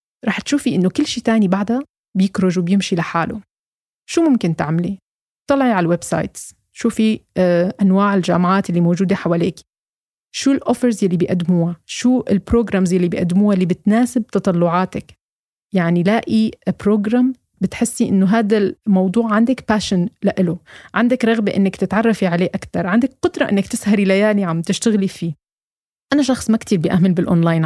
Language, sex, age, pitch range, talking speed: Arabic, female, 20-39, 185-235 Hz, 140 wpm